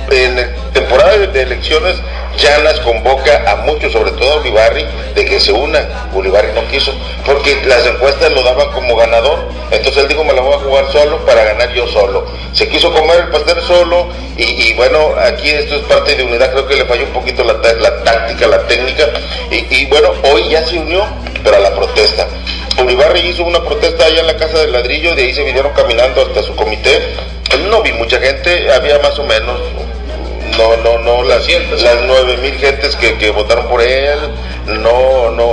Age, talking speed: 50-69, 205 wpm